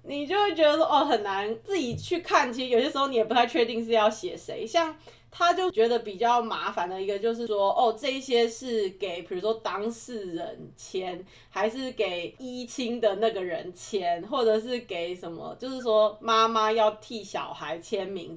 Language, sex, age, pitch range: Chinese, female, 20-39, 200-265 Hz